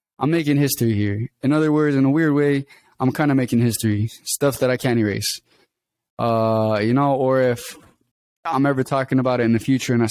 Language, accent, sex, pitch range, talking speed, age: English, American, male, 115-135 Hz, 215 wpm, 20-39